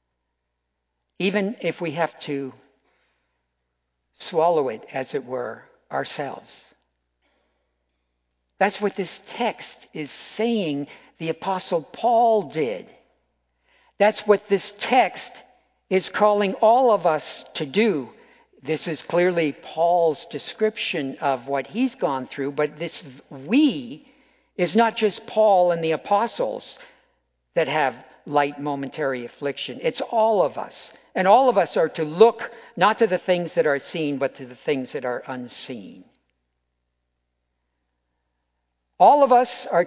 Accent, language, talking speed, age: American, English, 130 wpm, 50-69